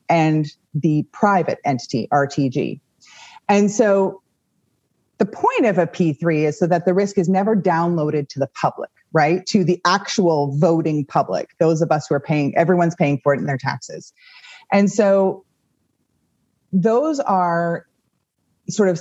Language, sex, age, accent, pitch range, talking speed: English, female, 30-49, American, 150-200 Hz, 150 wpm